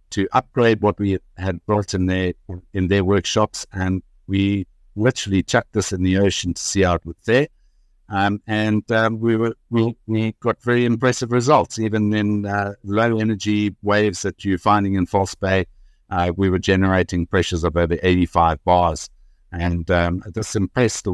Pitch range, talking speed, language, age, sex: 90-105 Hz, 165 wpm, English, 60-79, male